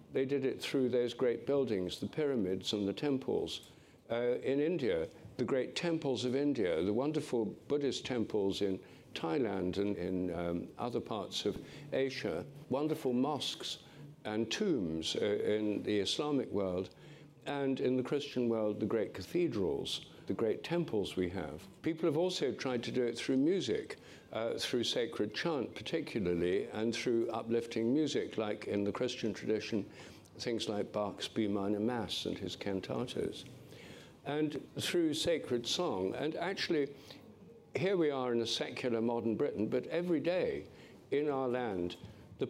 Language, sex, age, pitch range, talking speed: English, male, 60-79, 105-140 Hz, 150 wpm